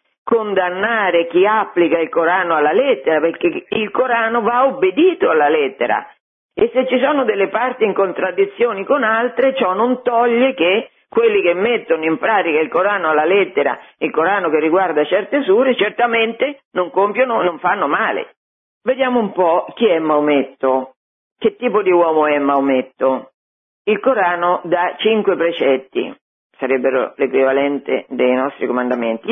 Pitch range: 155-245 Hz